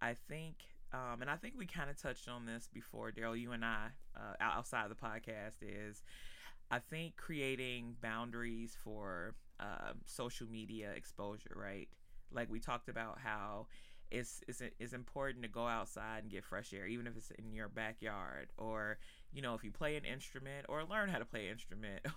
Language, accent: English, American